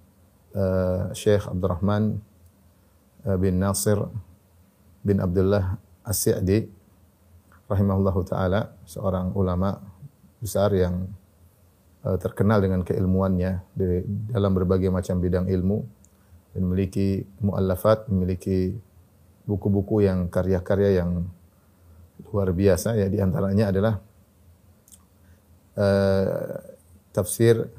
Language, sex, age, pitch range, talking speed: Indonesian, male, 30-49, 95-105 Hz, 85 wpm